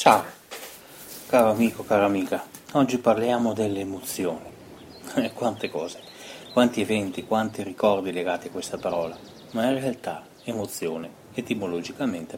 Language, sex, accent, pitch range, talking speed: Italian, male, native, 95-120 Hz, 115 wpm